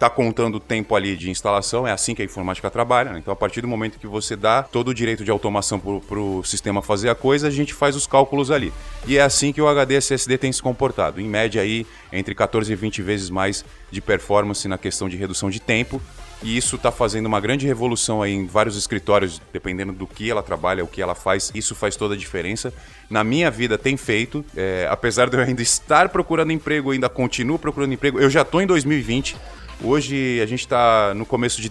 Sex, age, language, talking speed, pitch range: male, 20-39, Portuguese, 225 wpm, 105-140 Hz